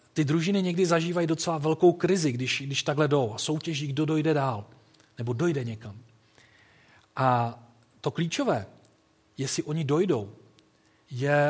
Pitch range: 125-155 Hz